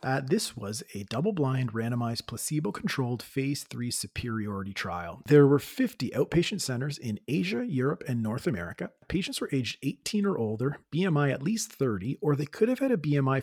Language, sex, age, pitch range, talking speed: English, male, 30-49, 115-150 Hz, 175 wpm